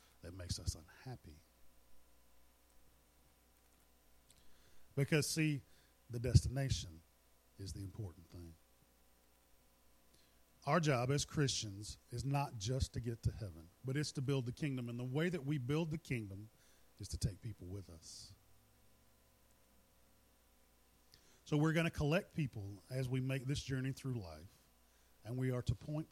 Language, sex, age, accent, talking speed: English, male, 40-59, American, 140 wpm